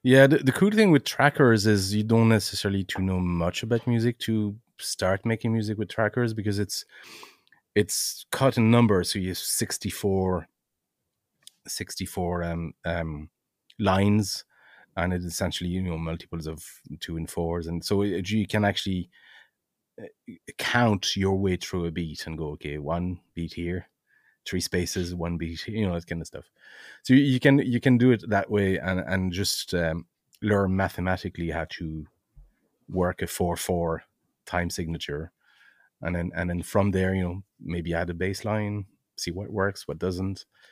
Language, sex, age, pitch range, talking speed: English, male, 30-49, 85-105 Hz, 170 wpm